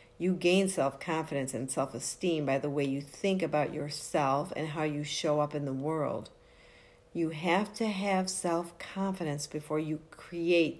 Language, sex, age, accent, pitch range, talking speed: English, female, 50-69, American, 145-180 Hz, 155 wpm